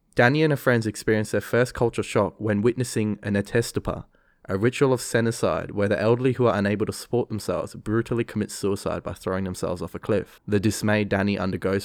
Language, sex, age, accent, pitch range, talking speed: English, male, 20-39, Australian, 95-120 Hz, 200 wpm